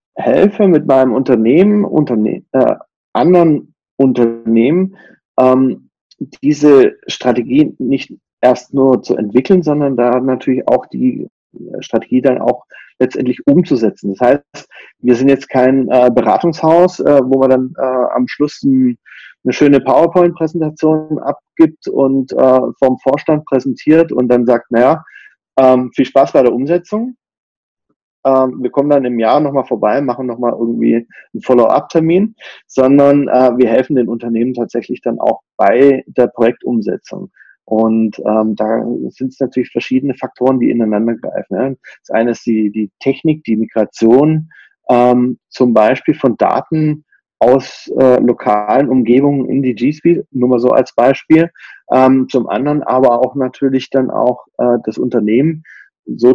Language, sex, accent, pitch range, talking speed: German, male, German, 125-150 Hz, 140 wpm